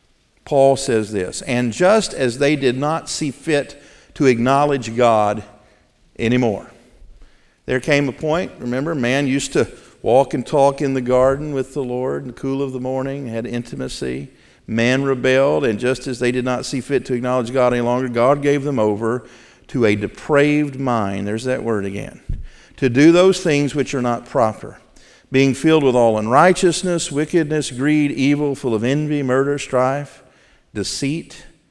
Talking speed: 170 wpm